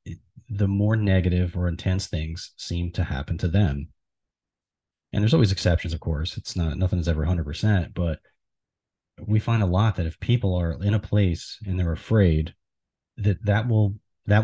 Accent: American